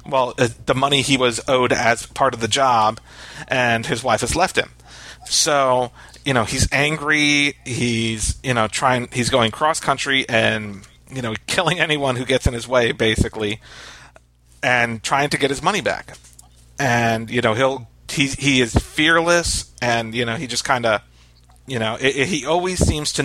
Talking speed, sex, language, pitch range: 185 wpm, male, English, 115-140 Hz